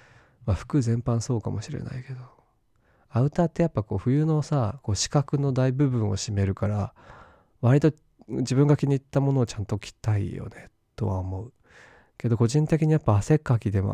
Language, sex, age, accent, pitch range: Japanese, male, 20-39, native, 100-130 Hz